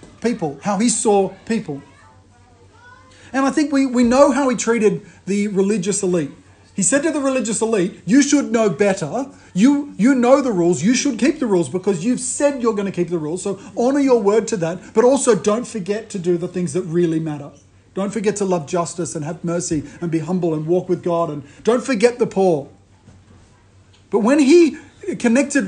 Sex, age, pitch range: male, 40-59, 170-225 Hz